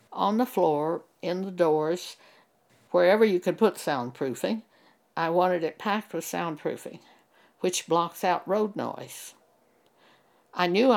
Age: 60-79